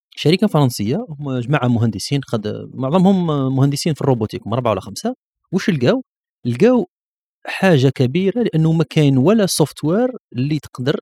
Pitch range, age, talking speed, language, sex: 115-155 Hz, 40-59, 140 wpm, Arabic, male